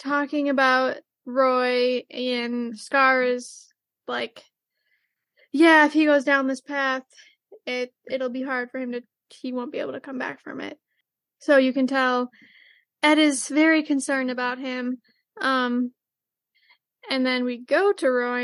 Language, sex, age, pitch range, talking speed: English, female, 10-29, 255-295 Hz, 155 wpm